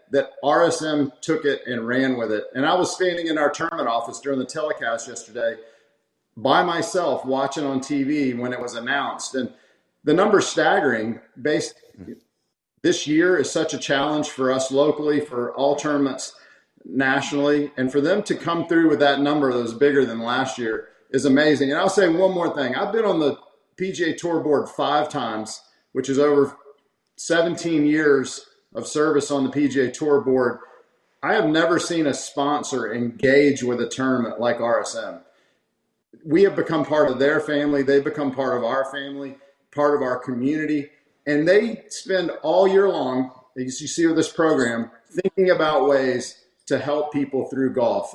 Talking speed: 175 wpm